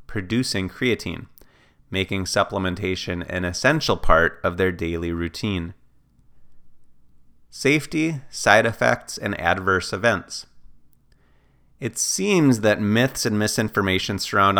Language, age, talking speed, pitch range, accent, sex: English, 30-49, 100 wpm, 90-115 Hz, American, male